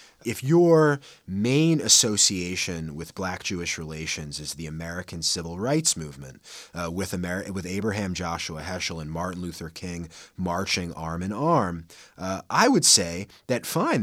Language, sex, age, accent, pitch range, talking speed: English, male, 30-49, American, 85-105 Hz, 150 wpm